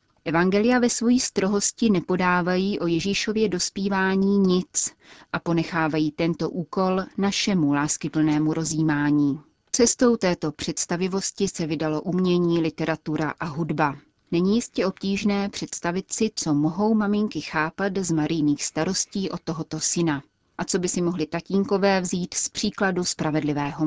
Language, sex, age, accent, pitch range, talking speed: Czech, female, 30-49, native, 160-195 Hz, 125 wpm